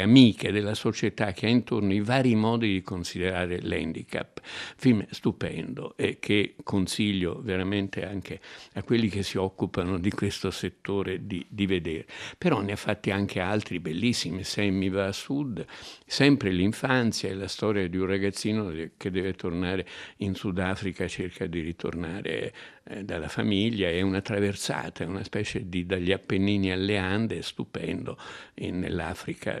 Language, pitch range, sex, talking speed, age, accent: Italian, 90-105 Hz, male, 155 wpm, 60-79, native